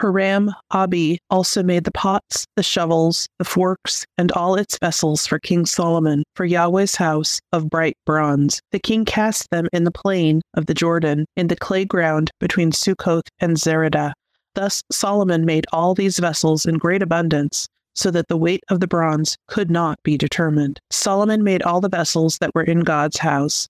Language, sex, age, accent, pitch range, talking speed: English, female, 30-49, American, 160-185 Hz, 175 wpm